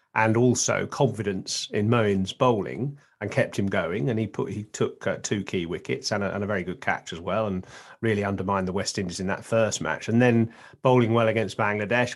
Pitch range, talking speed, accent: 105-125 Hz, 215 wpm, British